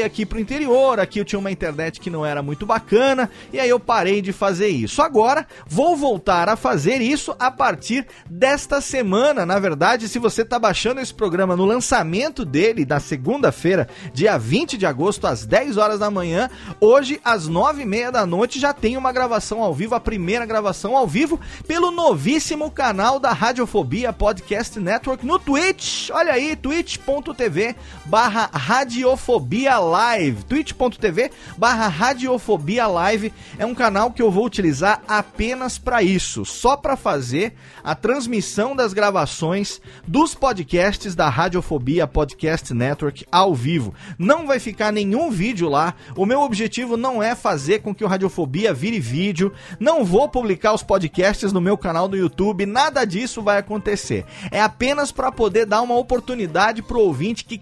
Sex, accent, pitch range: male, Brazilian, 190-255 Hz